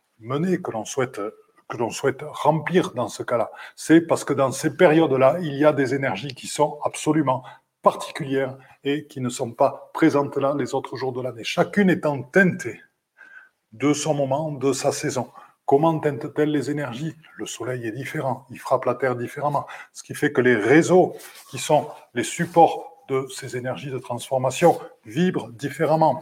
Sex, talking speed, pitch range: male, 170 wpm, 125-155 Hz